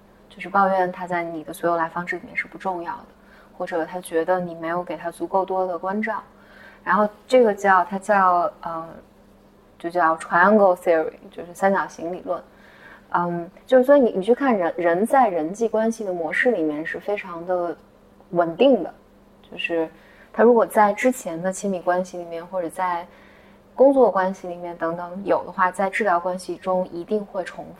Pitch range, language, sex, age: 175-215 Hz, Chinese, female, 20-39